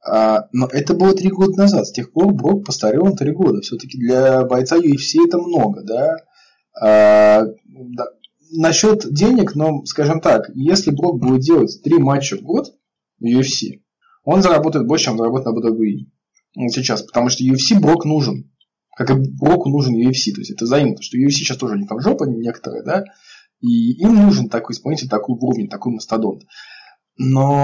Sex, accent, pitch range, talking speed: male, native, 125-200 Hz, 175 wpm